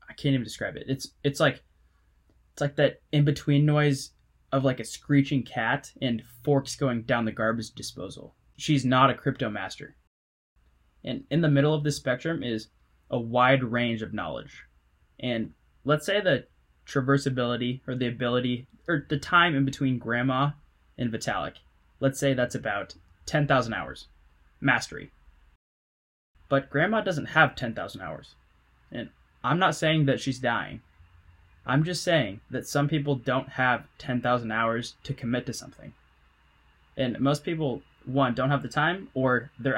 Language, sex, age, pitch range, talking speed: English, male, 10-29, 110-140 Hz, 155 wpm